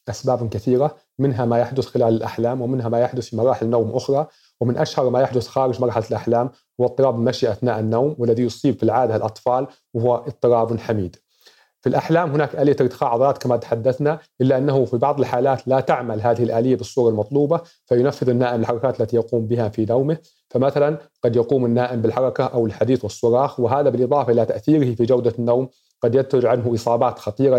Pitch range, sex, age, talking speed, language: 115-130 Hz, male, 40-59, 175 wpm, Arabic